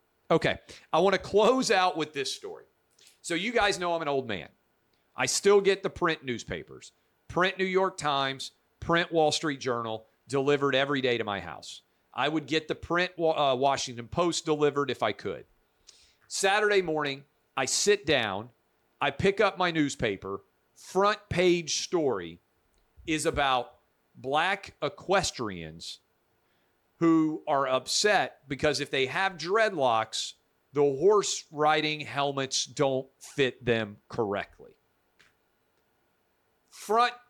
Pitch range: 125-180 Hz